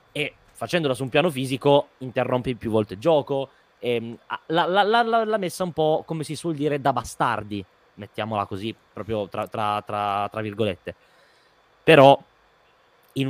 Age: 20-39